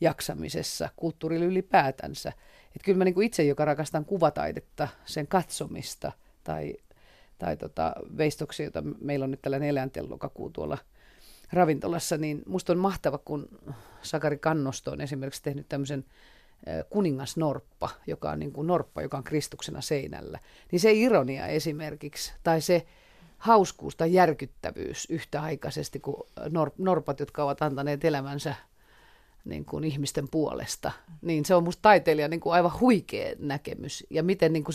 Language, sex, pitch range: Finnish, female, 140-170 Hz